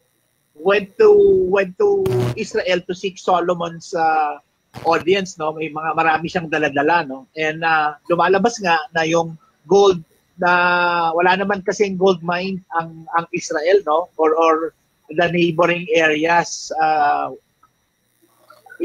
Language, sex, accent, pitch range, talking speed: English, male, Filipino, 155-190 Hz, 125 wpm